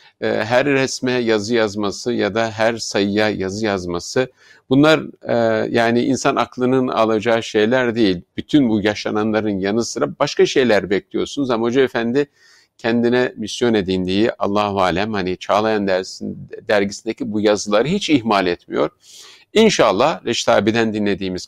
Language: Turkish